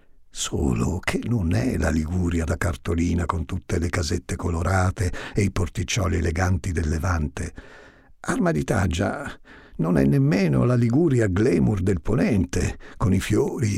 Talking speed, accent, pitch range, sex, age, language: 140 wpm, native, 85-115 Hz, male, 60-79, Italian